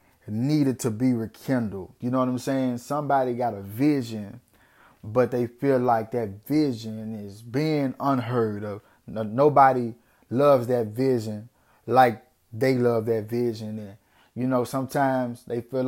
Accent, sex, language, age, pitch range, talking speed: American, male, English, 20-39, 110-130 Hz, 145 wpm